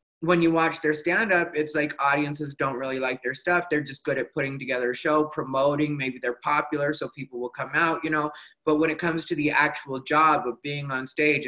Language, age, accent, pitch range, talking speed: English, 30-49, American, 135-165 Hz, 230 wpm